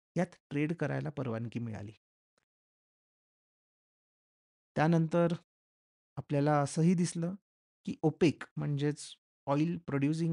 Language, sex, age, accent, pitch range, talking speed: Marathi, male, 30-49, native, 135-170 Hz, 80 wpm